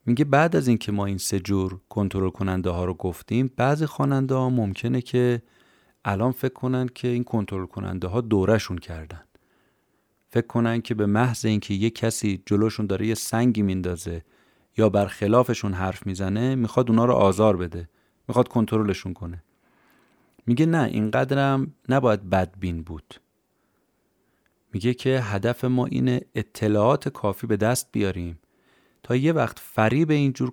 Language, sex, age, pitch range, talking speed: Persian, male, 30-49, 95-125 Hz, 145 wpm